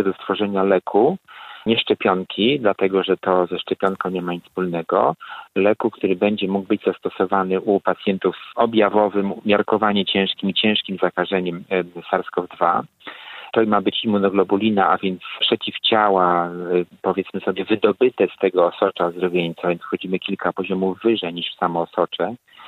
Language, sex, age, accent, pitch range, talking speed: Polish, male, 40-59, native, 90-100 Hz, 140 wpm